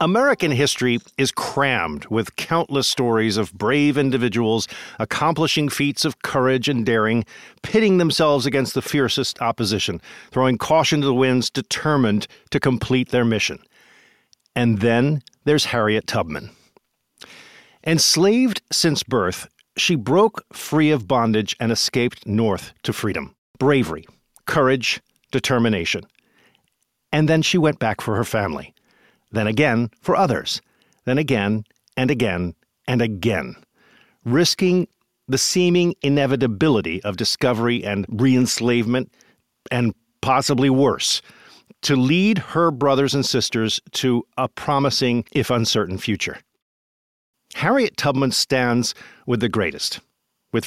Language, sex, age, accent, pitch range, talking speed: English, male, 50-69, American, 115-145 Hz, 120 wpm